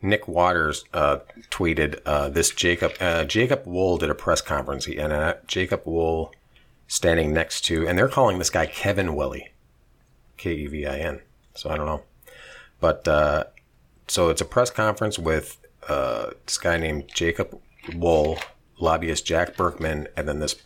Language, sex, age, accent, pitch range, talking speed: English, male, 40-59, American, 75-90 Hz, 155 wpm